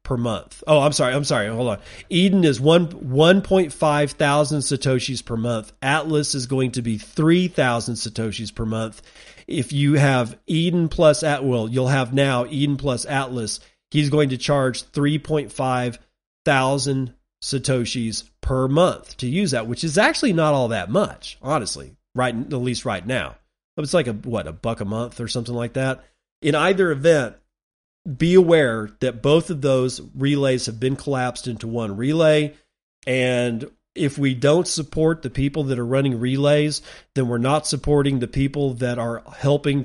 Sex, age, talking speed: male, 40-59, 170 wpm